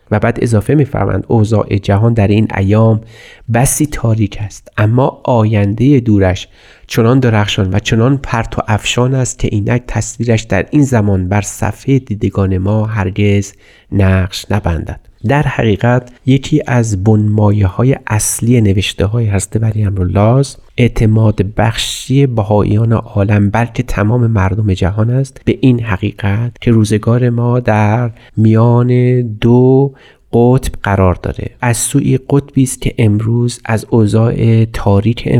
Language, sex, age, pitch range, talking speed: Persian, male, 30-49, 105-125 Hz, 130 wpm